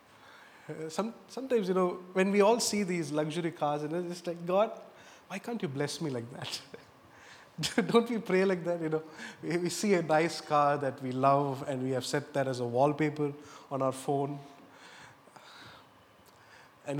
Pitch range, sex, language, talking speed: 140-180 Hz, male, English, 175 wpm